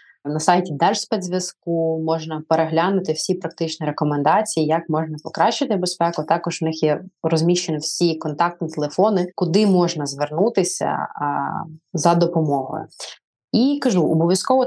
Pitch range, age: 160-190 Hz, 20-39